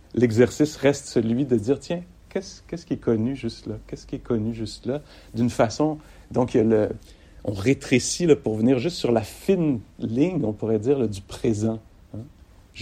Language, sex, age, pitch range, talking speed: English, male, 60-79, 105-130 Hz, 190 wpm